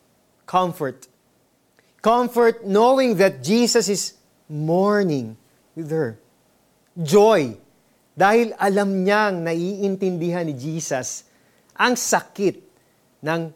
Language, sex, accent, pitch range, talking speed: Filipino, male, native, 140-200 Hz, 85 wpm